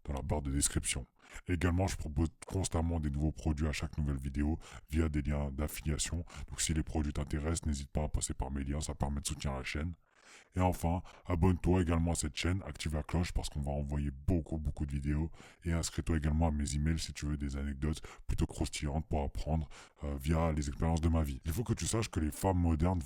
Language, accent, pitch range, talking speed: French, French, 75-90 Hz, 230 wpm